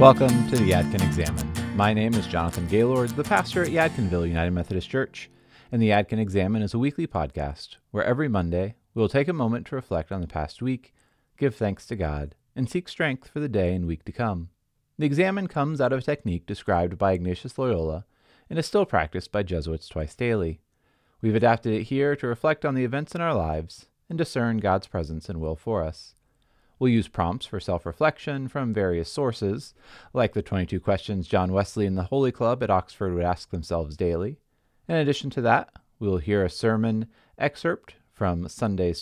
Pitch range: 90-130 Hz